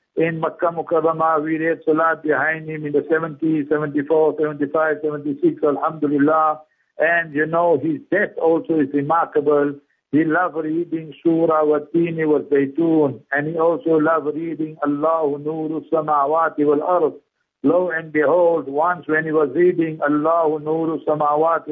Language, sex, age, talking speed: English, male, 60-79, 145 wpm